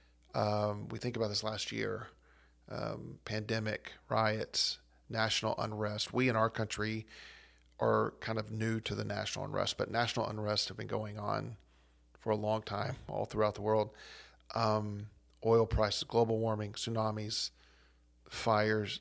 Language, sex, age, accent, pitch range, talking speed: English, male, 40-59, American, 105-115 Hz, 145 wpm